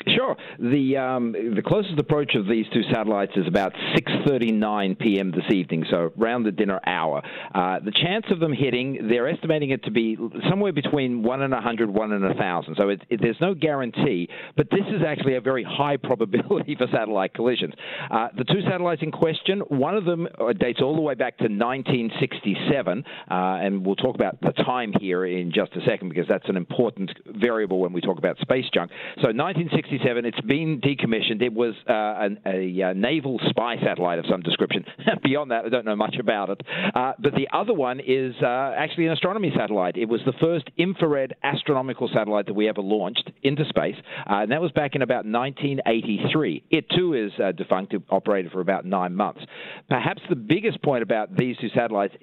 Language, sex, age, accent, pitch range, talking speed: English, male, 50-69, Australian, 105-150 Hz, 195 wpm